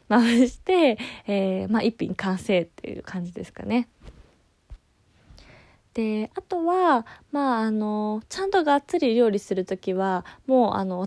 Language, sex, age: Japanese, female, 20-39